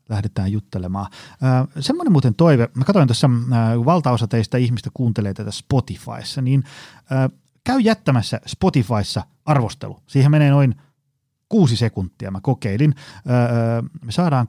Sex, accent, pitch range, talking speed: male, native, 110-145 Hz, 135 wpm